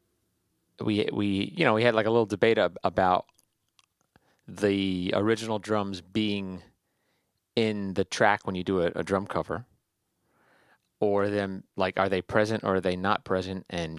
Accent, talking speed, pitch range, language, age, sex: American, 160 wpm, 90-110 Hz, English, 30-49, male